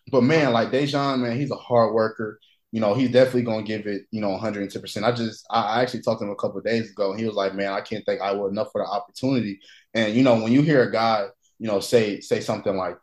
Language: English